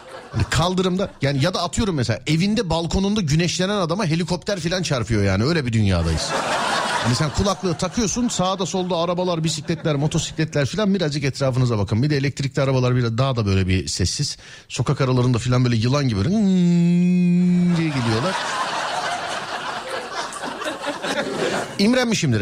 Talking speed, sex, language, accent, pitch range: 130 wpm, male, Turkish, native, 110-160 Hz